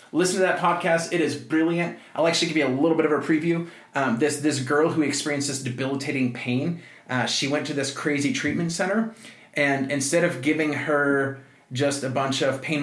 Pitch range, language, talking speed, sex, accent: 130-155 Hz, English, 205 wpm, male, American